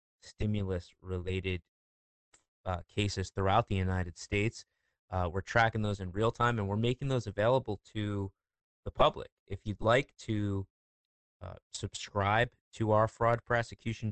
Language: English